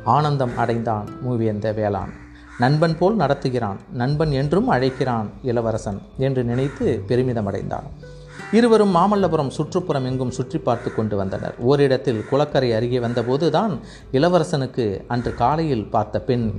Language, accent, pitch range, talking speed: Tamil, native, 115-150 Hz, 115 wpm